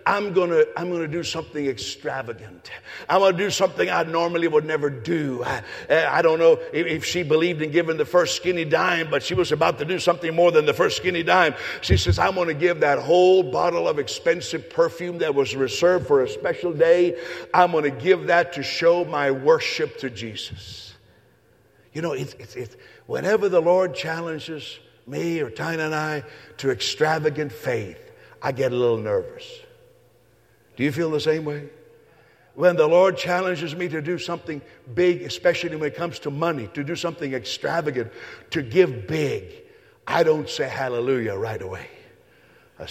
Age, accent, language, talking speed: 60-79, American, English, 180 wpm